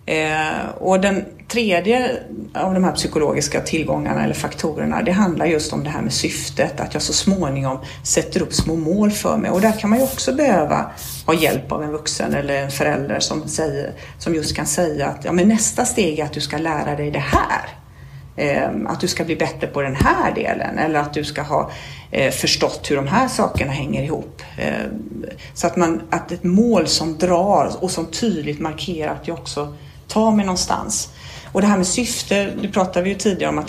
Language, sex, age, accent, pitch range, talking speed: English, female, 40-59, Swedish, 145-185 Hz, 210 wpm